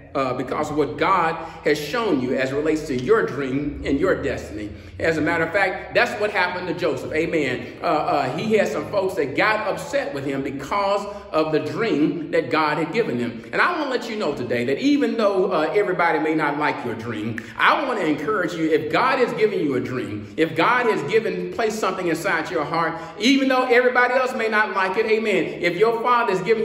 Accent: American